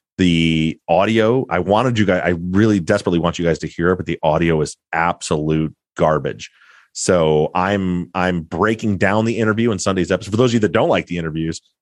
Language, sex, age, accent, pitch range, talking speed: English, male, 30-49, American, 85-110 Hz, 205 wpm